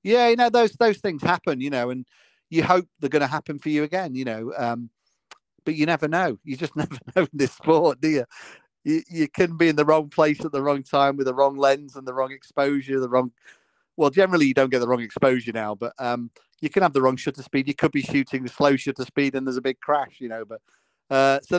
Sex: male